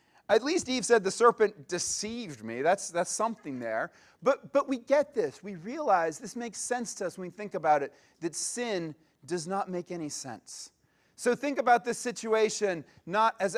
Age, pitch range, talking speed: 30-49, 185-245 Hz, 190 wpm